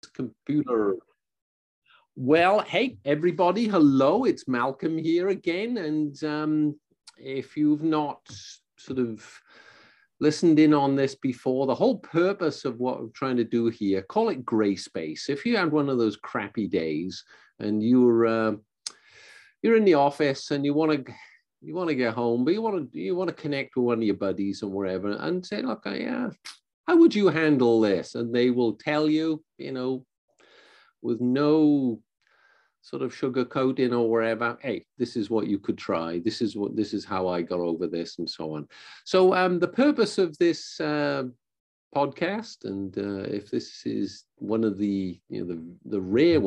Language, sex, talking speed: English, male, 180 wpm